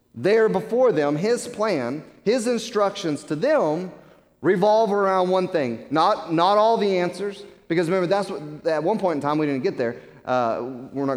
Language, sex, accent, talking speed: English, male, American, 185 wpm